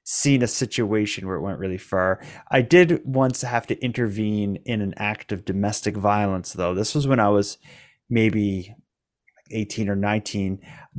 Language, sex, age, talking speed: English, male, 20-39, 165 wpm